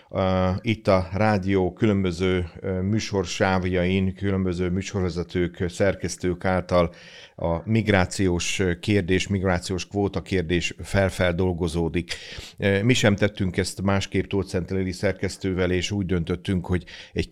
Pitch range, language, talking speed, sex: 85-95 Hz, Hungarian, 95 wpm, male